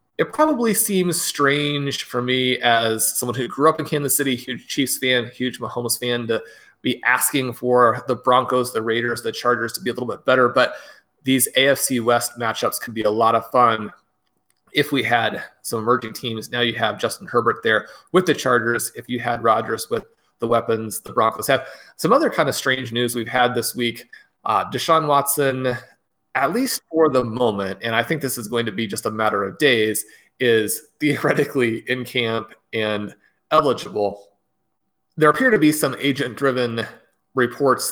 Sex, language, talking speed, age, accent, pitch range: male, English, 185 wpm, 30-49, American, 115-135 Hz